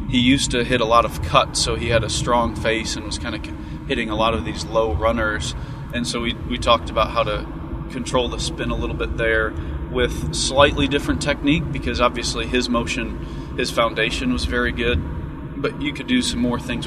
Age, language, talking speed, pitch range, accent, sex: 30-49, English, 215 wpm, 80-125 Hz, American, male